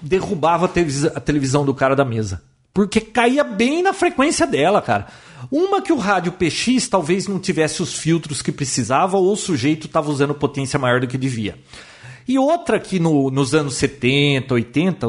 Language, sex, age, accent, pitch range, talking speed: Portuguese, male, 40-59, Brazilian, 135-205 Hz, 175 wpm